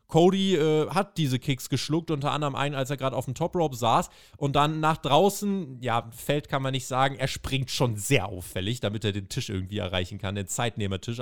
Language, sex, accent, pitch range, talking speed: German, male, German, 120-170 Hz, 215 wpm